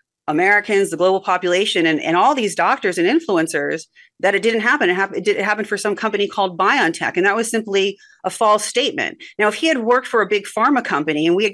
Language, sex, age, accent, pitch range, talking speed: English, female, 30-49, American, 175-250 Hz, 230 wpm